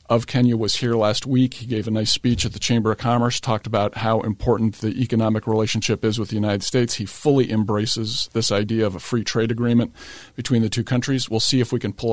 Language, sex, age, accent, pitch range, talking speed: English, male, 40-59, American, 110-130 Hz, 235 wpm